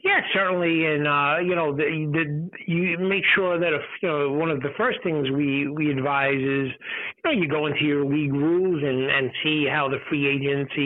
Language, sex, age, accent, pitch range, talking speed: English, male, 50-69, American, 150-190 Hz, 215 wpm